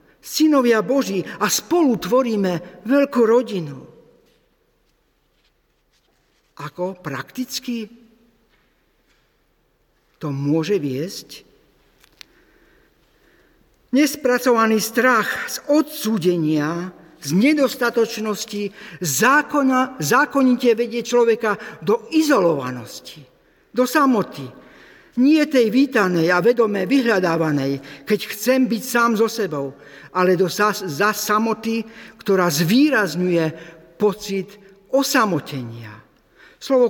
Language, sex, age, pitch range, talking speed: Slovak, male, 50-69, 185-250 Hz, 75 wpm